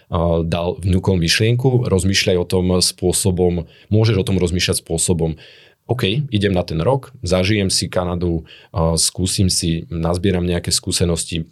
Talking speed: 135 wpm